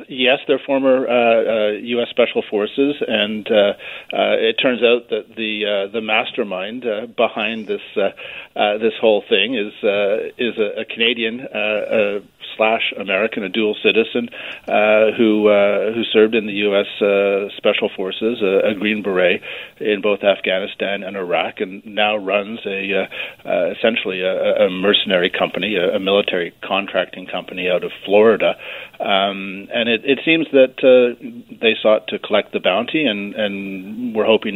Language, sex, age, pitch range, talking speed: English, male, 40-59, 100-125 Hz, 160 wpm